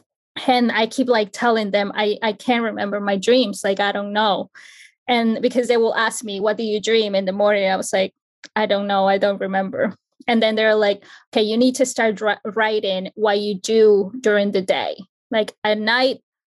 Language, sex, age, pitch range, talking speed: English, female, 20-39, 205-235 Hz, 205 wpm